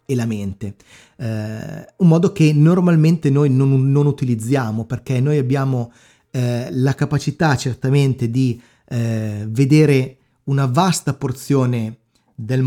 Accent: native